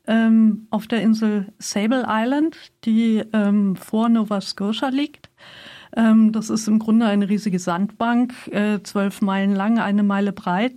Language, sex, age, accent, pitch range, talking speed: German, female, 50-69, German, 205-230 Hz, 145 wpm